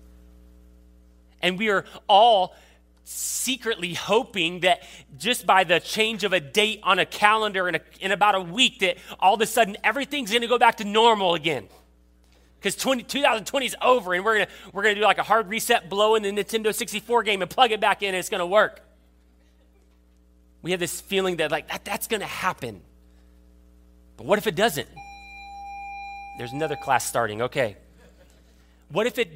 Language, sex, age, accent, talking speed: English, male, 30-49, American, 180 wpm